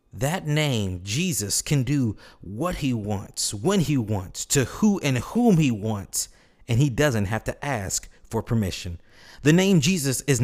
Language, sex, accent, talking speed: English, male, American, 165 wpm